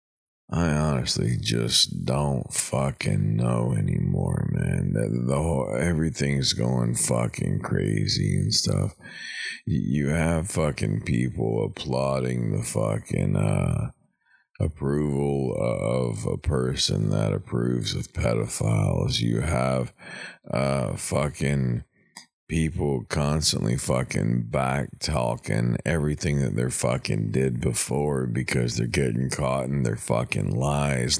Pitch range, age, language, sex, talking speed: 65-80 Hz, 50-69, English, male, 110 wpm